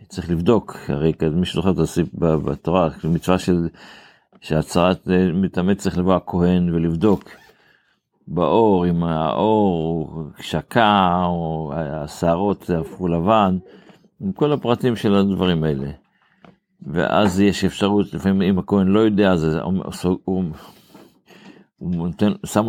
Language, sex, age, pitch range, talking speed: Hebrew, male, 50-69, 85-100 Hz, 105 wpm